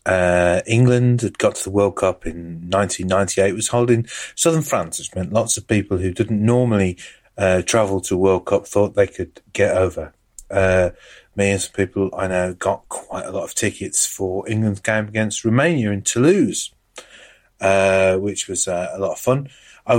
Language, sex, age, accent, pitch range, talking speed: English, male, 30-49, British, 95-110 Hz, 185 wpm